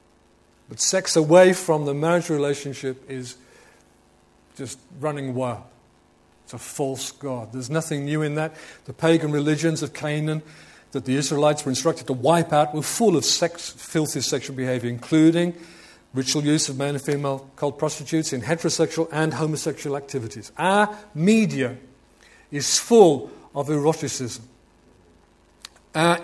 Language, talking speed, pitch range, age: English, 140 wpm, 120-165 Hz, 50-69